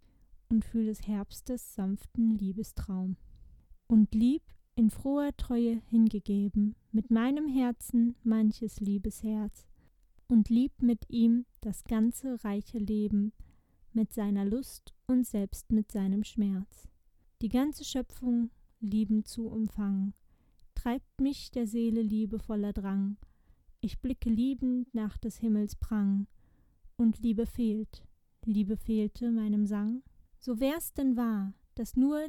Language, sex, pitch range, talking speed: German, female, 215-250 Hz, 120 wpm